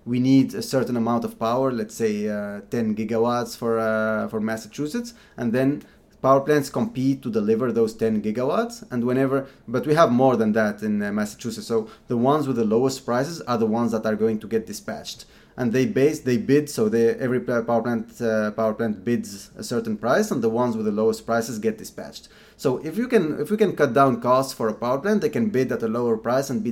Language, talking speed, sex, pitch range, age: English, 230 wpm, male, 110-140 Hz, 20-39